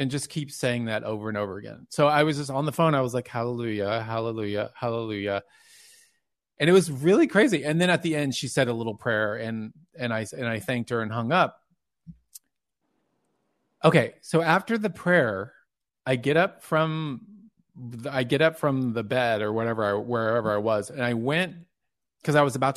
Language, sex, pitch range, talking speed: English, male, 120-170 Hz, 200 wpm